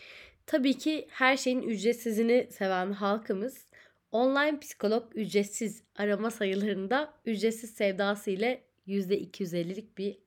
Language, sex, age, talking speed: Turkish, female, 30-49, 100 wpm